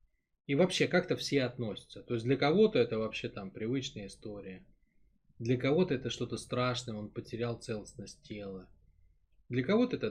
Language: Russian